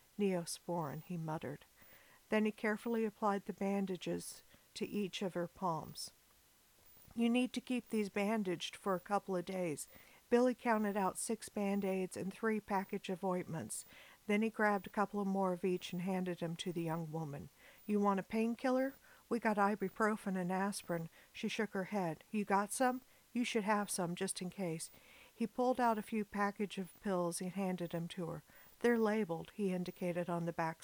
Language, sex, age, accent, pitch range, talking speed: English, female, 50-69, American, 175-215 Hz, 180 wpm